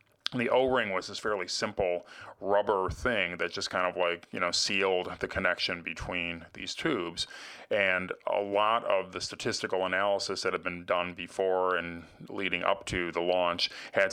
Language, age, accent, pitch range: English, 30-49, American, 85-95 Hz